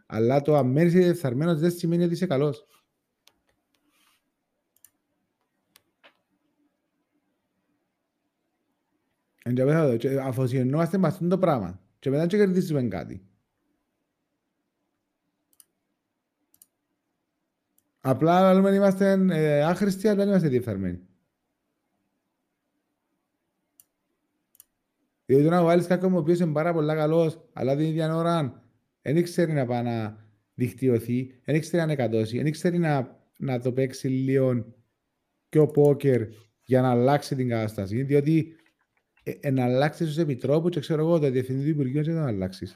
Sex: male